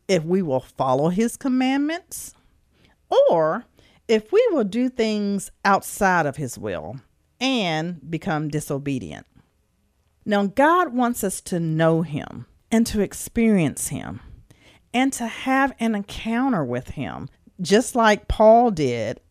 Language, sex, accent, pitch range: English, female, American, 160-235 Hz